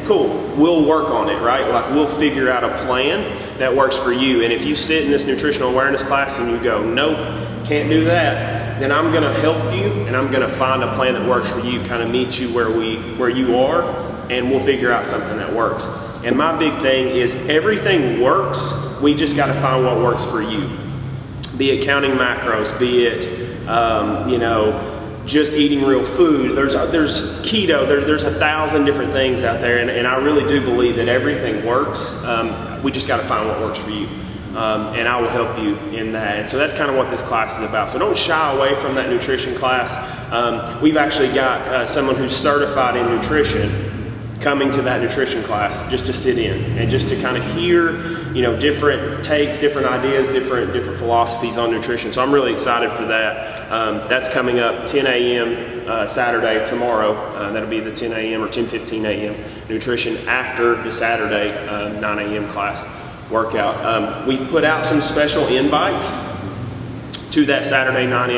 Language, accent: English, American